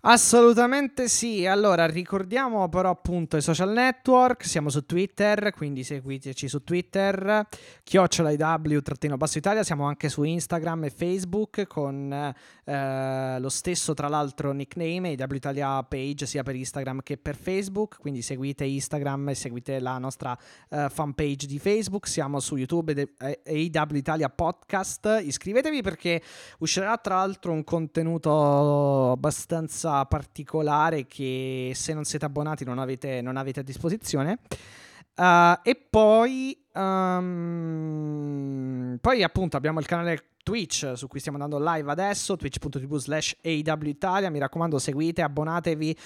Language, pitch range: Italian, 135-175 Hz